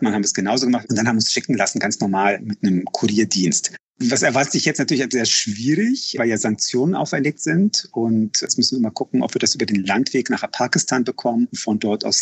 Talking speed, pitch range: 230 wpm, 110-130 Hz